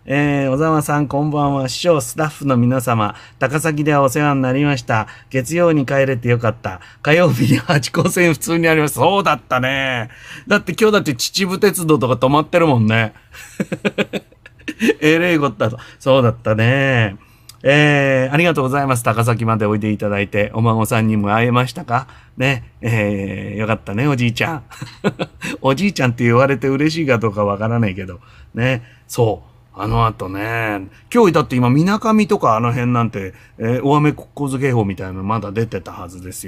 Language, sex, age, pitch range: Japanese, male, 40-59, 110-145 Hz